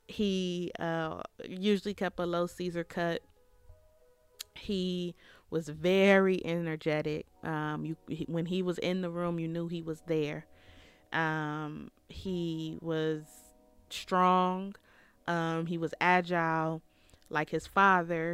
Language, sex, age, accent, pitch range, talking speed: English, female, 30-49, American, 150-175 Hz, 120 wpm